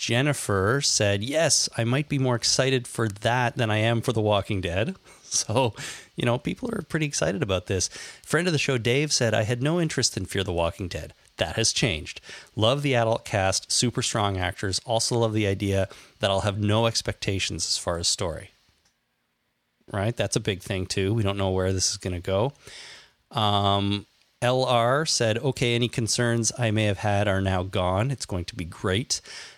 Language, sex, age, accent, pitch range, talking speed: English, male, 30-49, American, 100-120 Hz, 195 wpm